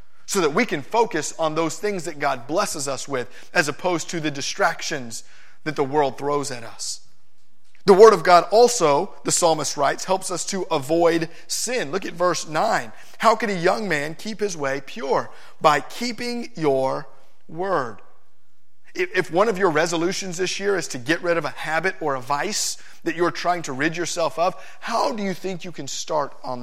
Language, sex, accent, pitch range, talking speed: English, male, American, 145-195 Hz, 195 wpm